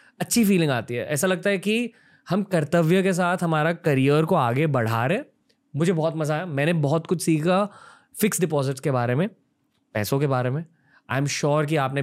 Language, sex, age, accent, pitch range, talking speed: Hindi, male, 20-39, native, 130-190 Hz, 200 wpm